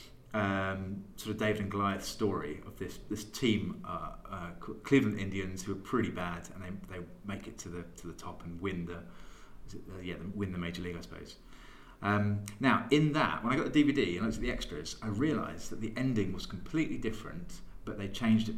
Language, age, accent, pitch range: English, 30-49, British, 95-115 Hz